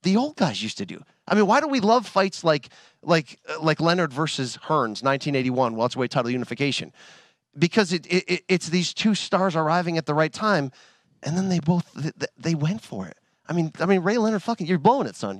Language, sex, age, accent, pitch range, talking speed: English, male, 40-59, American, 155-220 Hz, 215 wpm